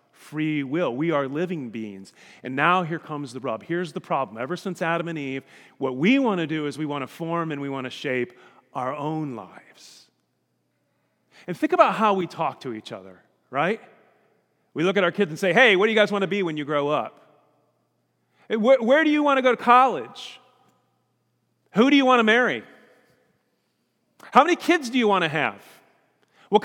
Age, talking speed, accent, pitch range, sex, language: 40-59, 205 wpm, American, 140-235 Hz, male, English